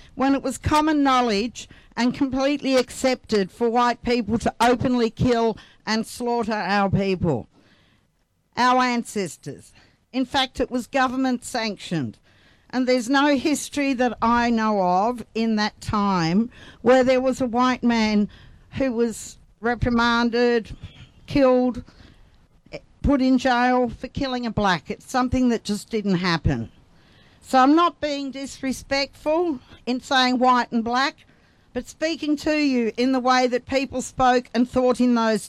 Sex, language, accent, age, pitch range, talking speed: female, English, Australian, 50-69, 220-255 Hz, 140 wpm